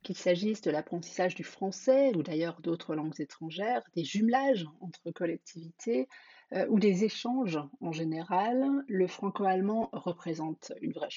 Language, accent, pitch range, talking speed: German, French, 175-250 Hz, 140 wpm